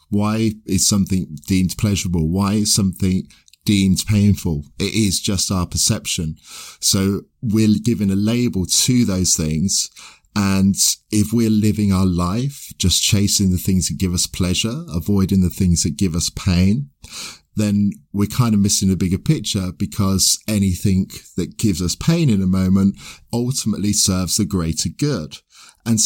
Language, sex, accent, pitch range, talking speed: English, male, British, 90-110 Hz, 155 wpm